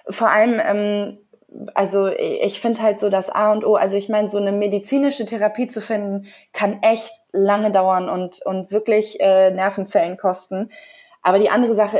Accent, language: German, German